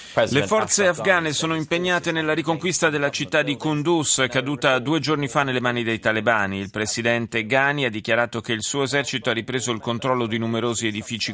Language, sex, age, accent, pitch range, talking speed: Italian, male, 30-49, native, 110-140 Hz, 185 wpm